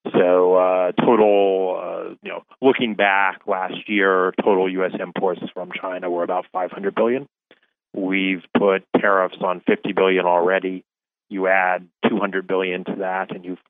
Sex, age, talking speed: male, 30-49, 150 wpm